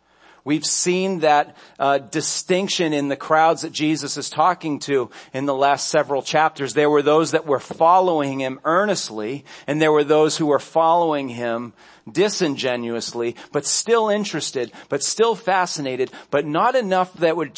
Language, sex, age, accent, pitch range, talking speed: English, male, 40-59, American, 120-170 Hz, 155 wpm